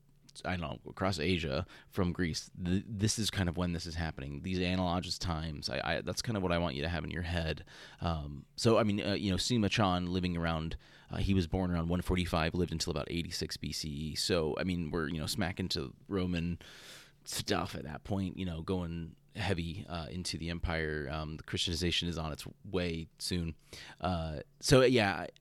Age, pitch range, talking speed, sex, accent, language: 30-49, 85-115 Hz, 195 wpm, male, American, English